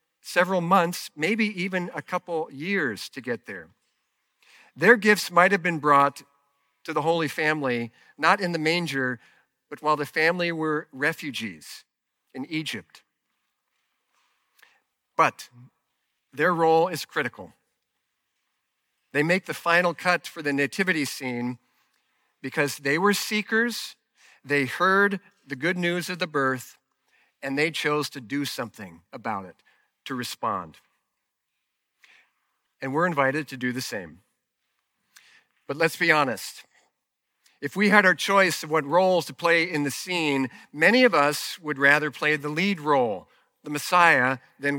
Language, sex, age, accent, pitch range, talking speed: English, male, 50-69, American, 140-175 Hz, 140 wpm